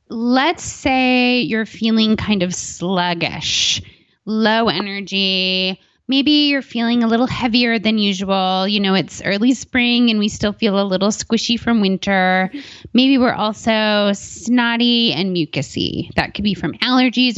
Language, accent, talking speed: English, American, 145 wpm